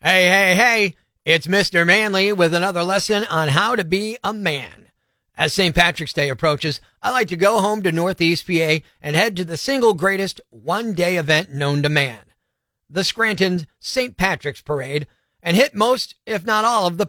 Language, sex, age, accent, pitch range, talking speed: English, male, 40-59, American, 160-215 Hz, 185 wpm